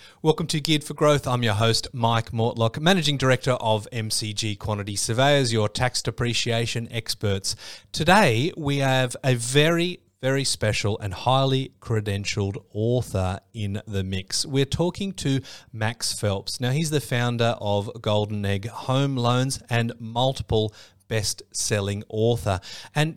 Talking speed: 135 wpm